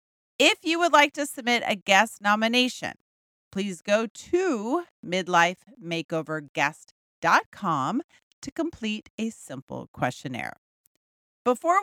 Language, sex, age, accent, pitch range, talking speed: English, female, 40-59, American, 175-275 Hz, 95 wpm